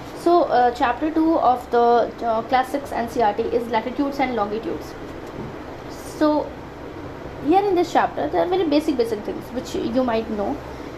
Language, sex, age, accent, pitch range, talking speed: English, female, 20-39, Indian, 240-295 Hz, 165 wpm